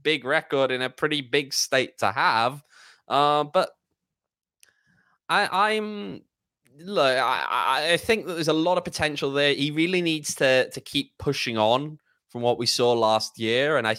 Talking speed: 165 wpm